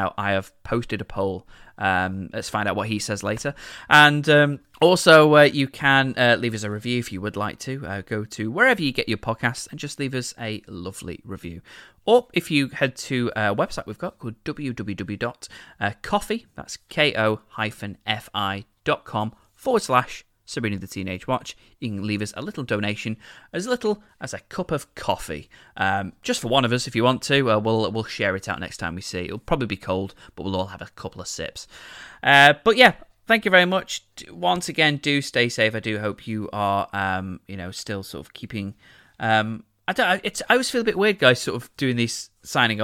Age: 20-39